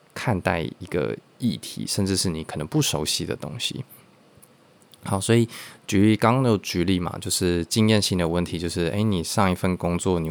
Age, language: 20-39, Chinese